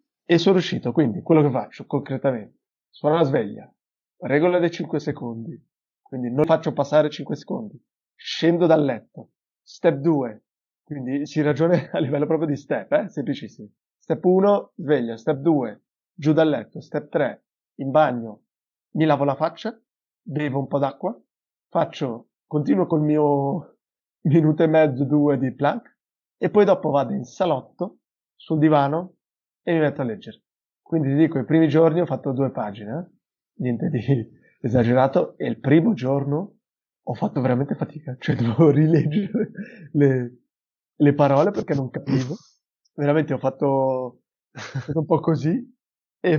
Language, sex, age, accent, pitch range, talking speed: Italian, male, 30-49, native, 135-165 Hz, 150 wpm